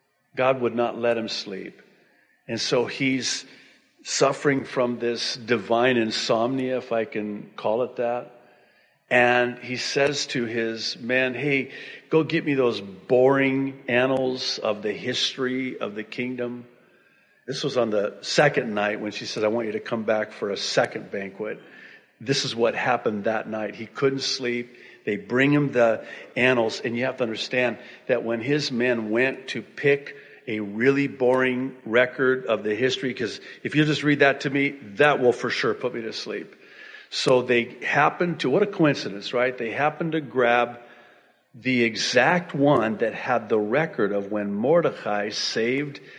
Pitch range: 115-135 Hz